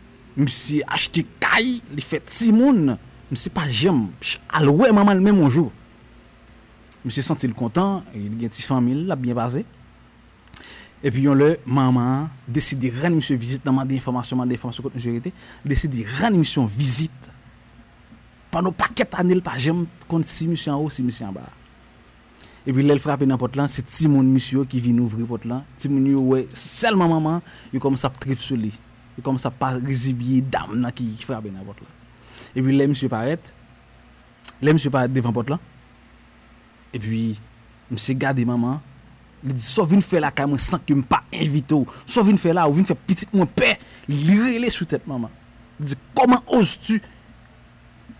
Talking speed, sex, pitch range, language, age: 180 wpm, male, 125-160 Hz, French, 30-49